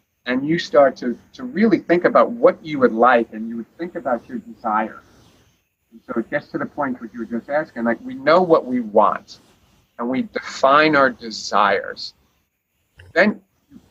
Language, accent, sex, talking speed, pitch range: English, American, male, 190 wpm, 130-175 Hz